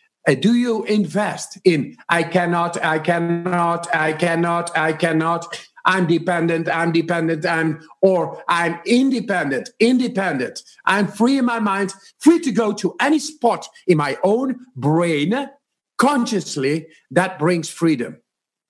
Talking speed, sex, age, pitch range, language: 125 wpm, male, 50-69, 160-210 Hz, English